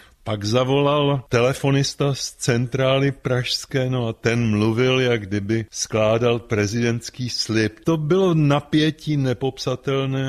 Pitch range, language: 110-135 Hz, Czech